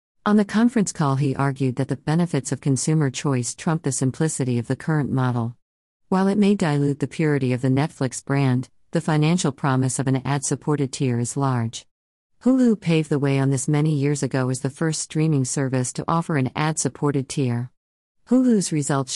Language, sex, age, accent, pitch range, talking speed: English, female, 50-69, American, 130-155 Hz, 190 wpm